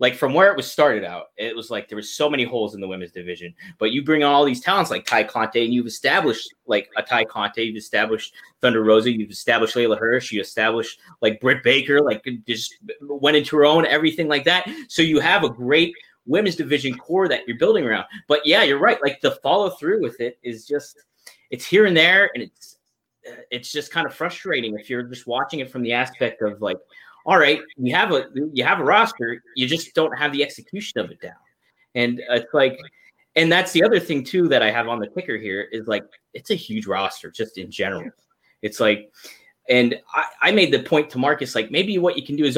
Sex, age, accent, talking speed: male, 30-49, American, 230 wpm